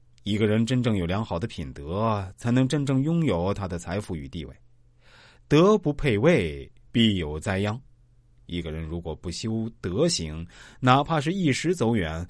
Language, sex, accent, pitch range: Chinese, male, native, 100-130 Hz